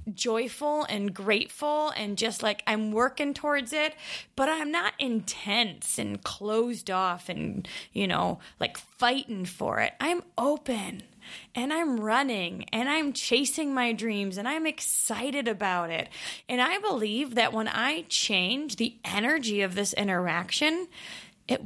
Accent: American